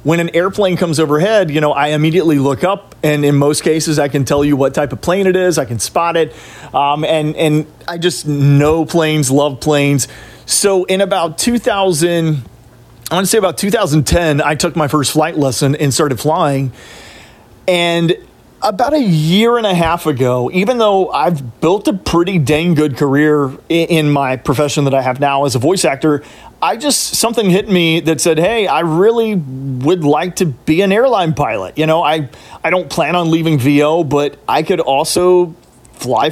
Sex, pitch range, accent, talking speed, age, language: male, 145-170 Hz, American, 190 wpm, 30-49, English